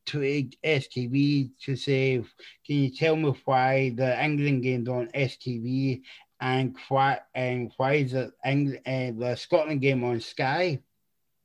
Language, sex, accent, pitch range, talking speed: English, male, British, 130-150 Hz, 145 wpm